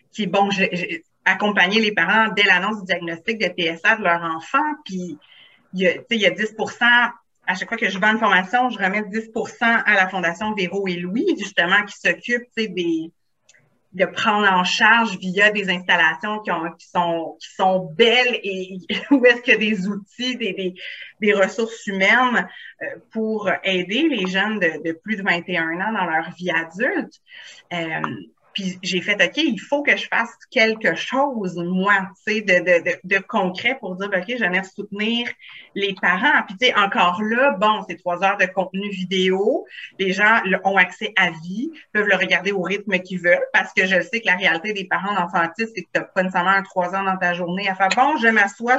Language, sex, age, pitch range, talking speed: French, female, 30-49, 185-225 Hz, 200 wpm